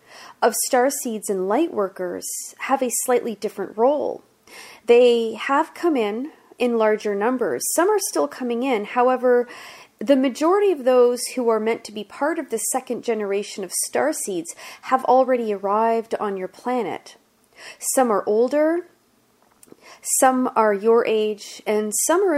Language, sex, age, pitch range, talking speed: English, female, 40-59, 210-275 Hz, 155 wpm